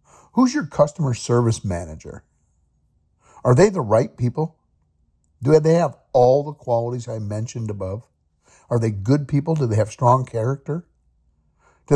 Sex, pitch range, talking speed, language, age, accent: male, 95-155 Hz, 145 wpm, English, 50-69, American